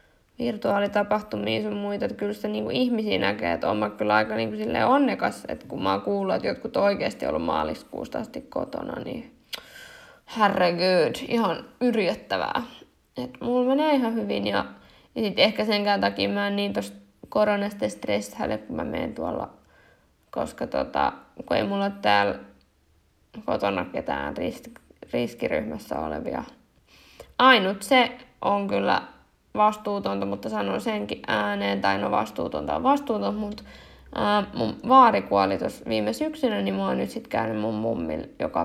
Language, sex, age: Finnish, female, 10-29